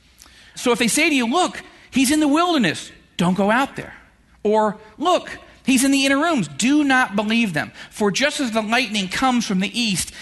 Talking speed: 205 wpm